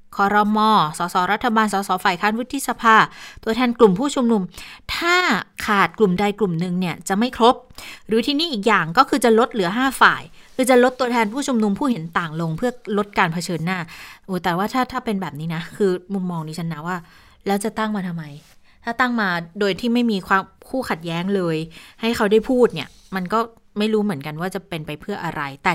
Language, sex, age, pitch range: Thai, female, 20-39, 180-225 Hz